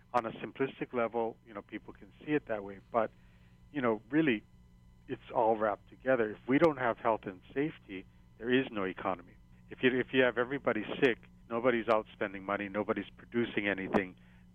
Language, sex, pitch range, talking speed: English, male, 95-120 Hz, 185 wpm